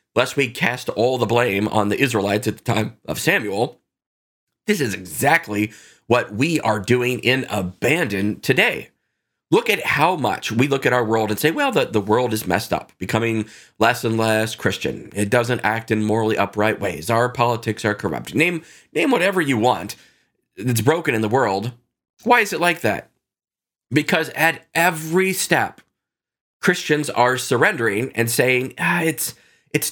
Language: English